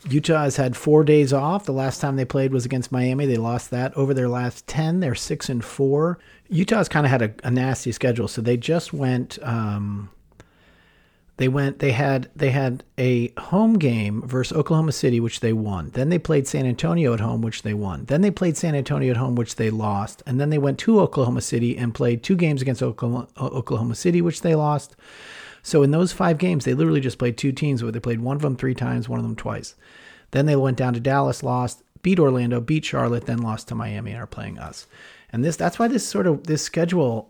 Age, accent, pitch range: 40-59, American, 120-150 Hz